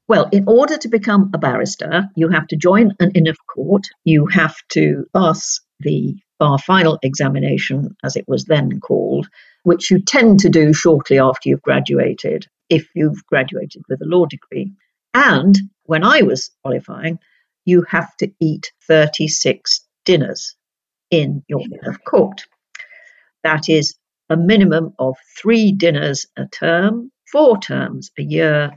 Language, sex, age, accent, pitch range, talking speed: English, female, 50-69, British, 155-195 Hz, 150 wpm